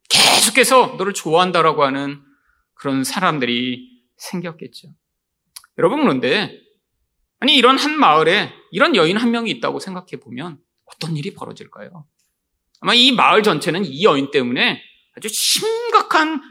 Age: 30-49